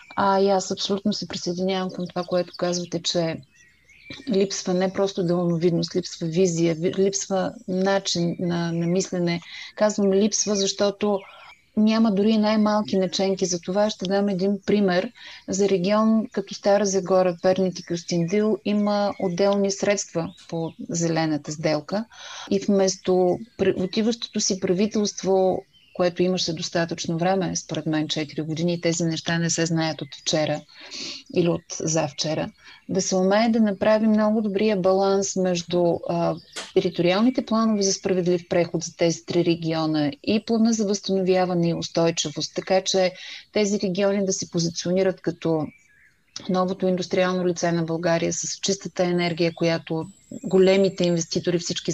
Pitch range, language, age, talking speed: 170-200 Hz, Bulgarian, 30-49, 140 wpm